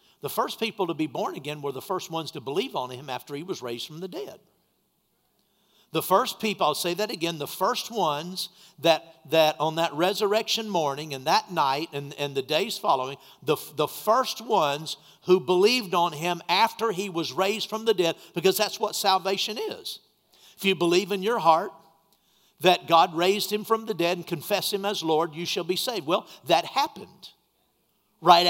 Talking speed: 195 wpm